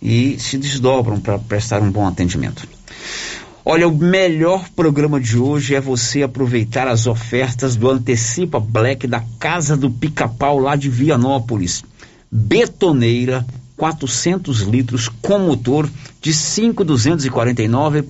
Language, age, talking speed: Portuguese, 60-79, 120 wpm